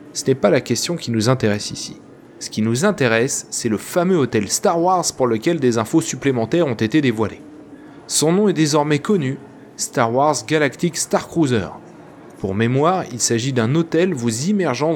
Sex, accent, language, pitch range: male, French, French, 115-160 Hz